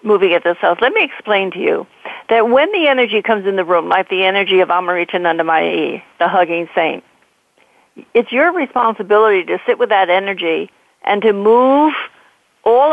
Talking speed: 175 wpm